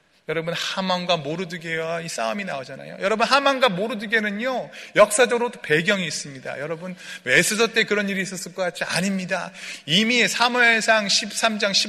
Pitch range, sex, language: 155-215 Hz, male, Korean